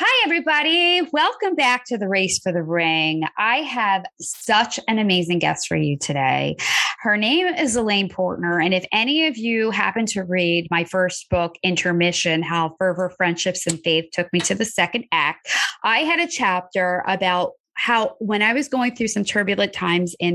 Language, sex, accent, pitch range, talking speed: English, female, American, 175-230 Hz, 185 wpm